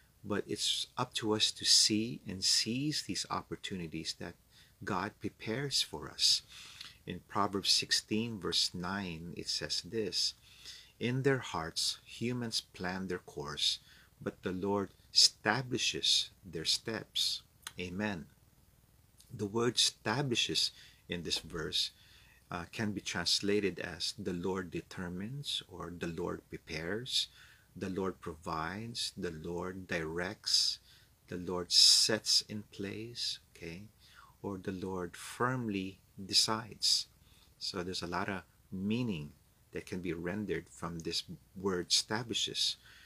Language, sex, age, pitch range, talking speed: English, male, 50-69, 90-115 Hz, 120 wpm